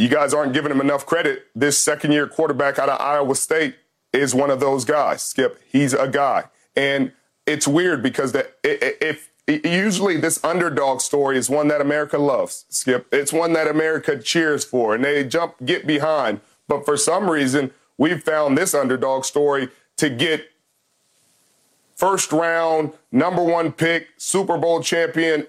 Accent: American